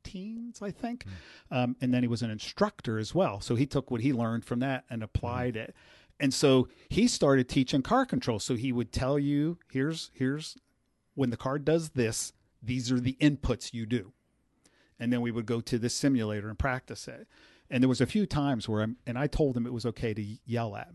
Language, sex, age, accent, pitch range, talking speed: English, male, 50-69, American, 110-145 Hz, 220 wpm